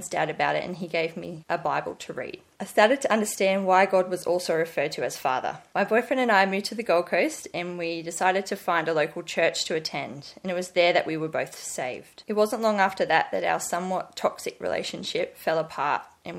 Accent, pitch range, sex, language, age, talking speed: Australian, 165-190 Hz, female, English, 20-39, 235 wpm